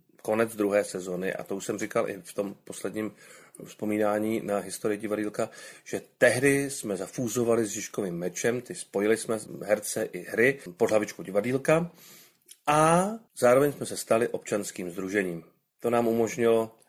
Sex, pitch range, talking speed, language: male, 100-140 Hz, 145 wpm, Czech